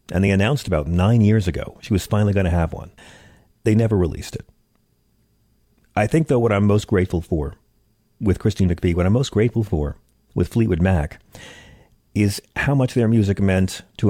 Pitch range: 90-110 Hz